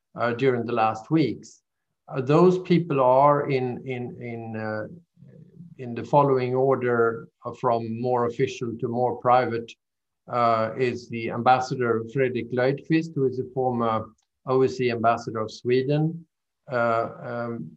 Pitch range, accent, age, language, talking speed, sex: 115-140 Hz, Norwegian, 50-69, English, 135 wpm, male